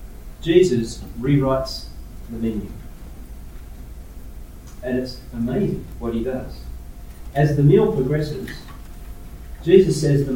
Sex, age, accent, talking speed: male, 40-59, Australian, 100 wpm